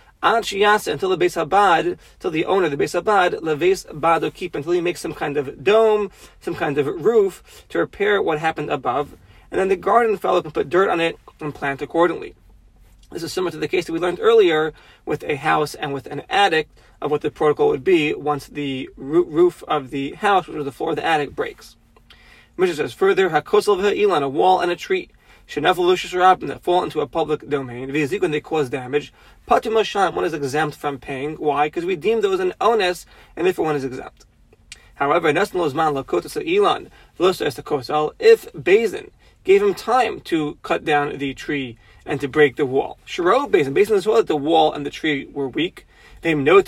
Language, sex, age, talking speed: English, male, 30-49, 190 wpm